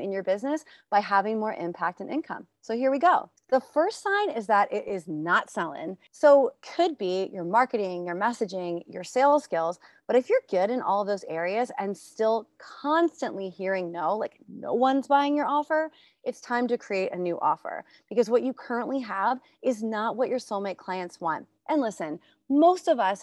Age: 30-49